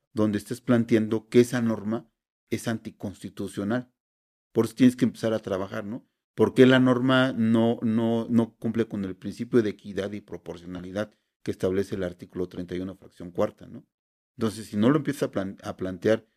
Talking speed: 170 wpm